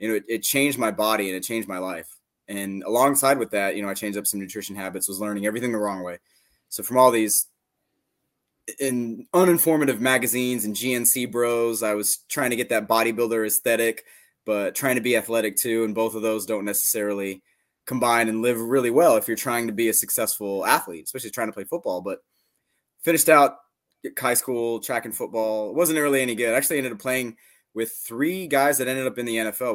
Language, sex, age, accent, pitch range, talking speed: English, male, 20-39, American, 105-130 Hz, 210 wpm